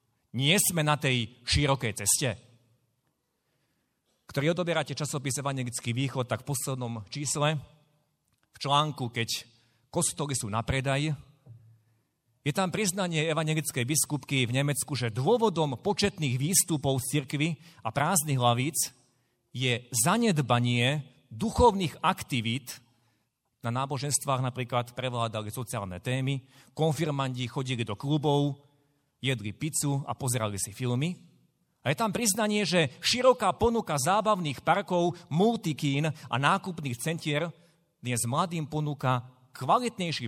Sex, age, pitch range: male, 40-59, 120-155 Hz